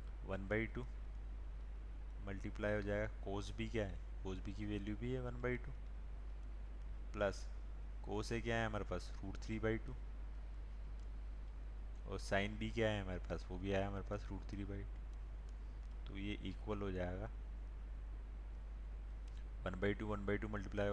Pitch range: 85-105 Hz